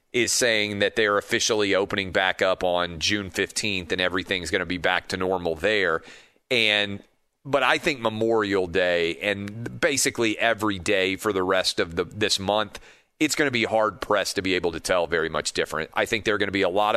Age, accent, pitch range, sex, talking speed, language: 40-59, American, 95-110 Hz, male, 210 wpm, English